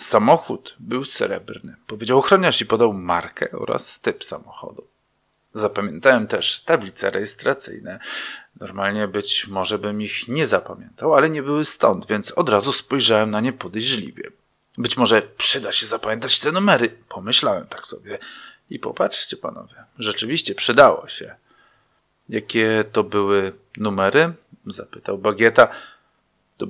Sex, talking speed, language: male, 125 wpm, Polish